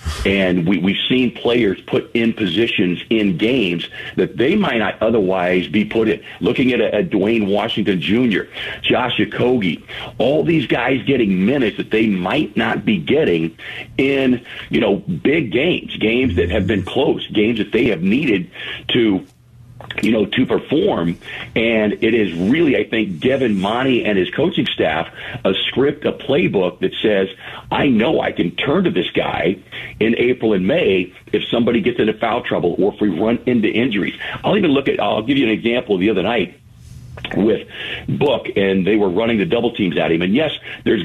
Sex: male